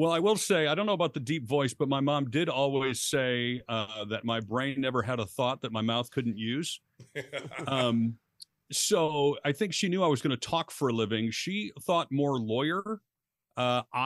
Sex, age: male, 50-69